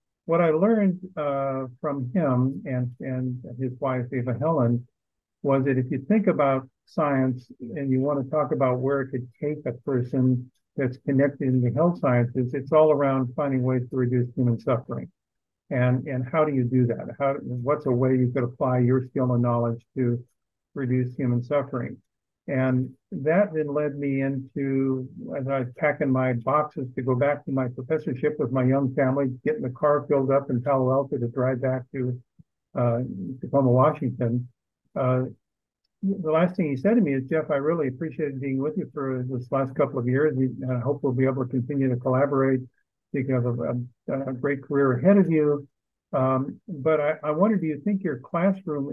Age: 50-69